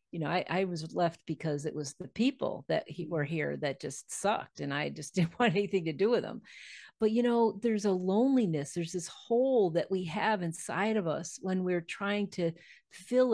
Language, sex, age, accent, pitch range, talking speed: English, female, 40-59, American, 170-210 Hz, 210 wpm